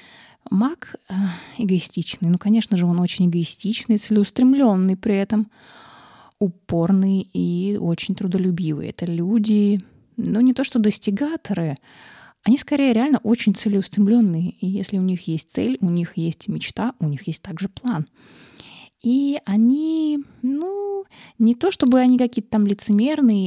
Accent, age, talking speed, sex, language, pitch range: native, 20-39, 135 wpm, female, Russian, 180-225 Hz